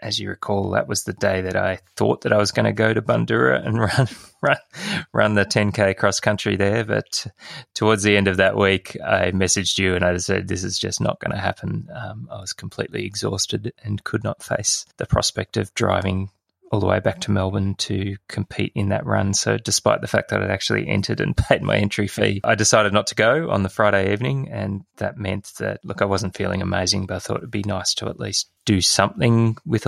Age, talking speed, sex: 20-39, 225 wpm, male